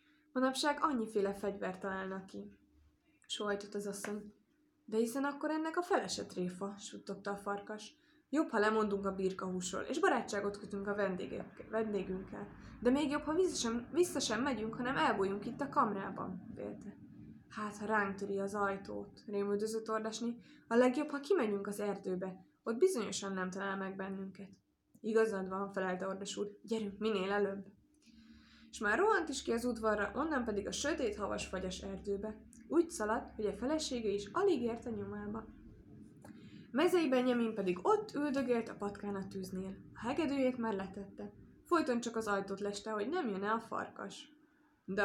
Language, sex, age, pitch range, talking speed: Hungarian, female, 20-39, 195-250 Hz, 160 wpm